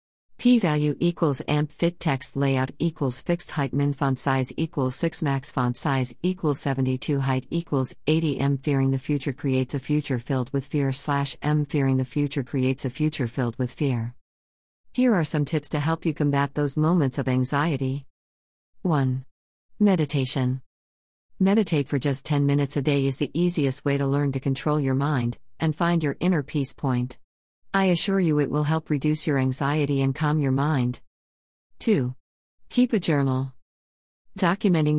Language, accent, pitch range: English, American, 130-155 Hz